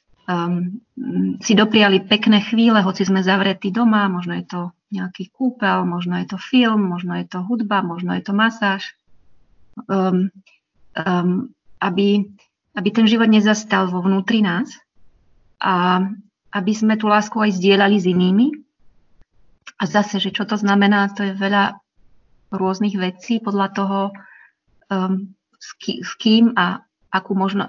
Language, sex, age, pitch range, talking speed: Slovak, female, 30-49, 190-215 Hz, 140 wpm